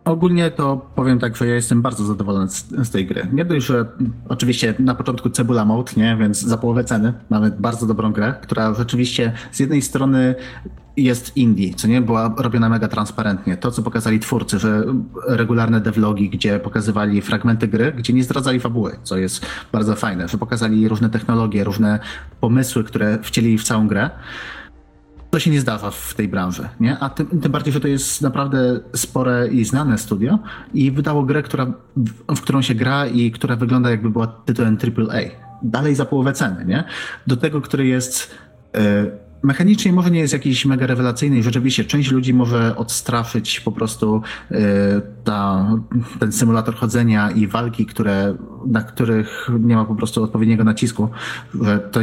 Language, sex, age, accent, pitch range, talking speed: Polish, male, 30-49, native, 110-130 Hz, 175 wpm